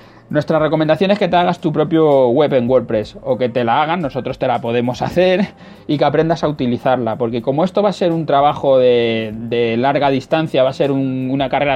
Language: Spanish